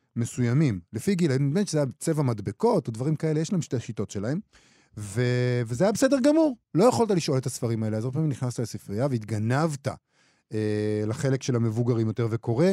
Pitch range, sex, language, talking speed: 115-170 Hz, male, Hebrew, 185 wpm